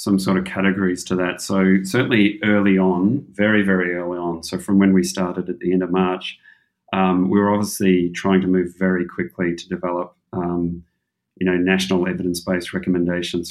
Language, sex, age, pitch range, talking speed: English, male, 30-49, 85-95 Hz, 180 wpm